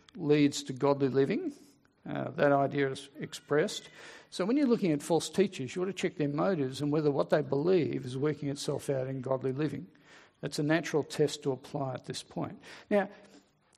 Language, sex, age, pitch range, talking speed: English, male, 50-69, 140-165 Hz, 190 wpm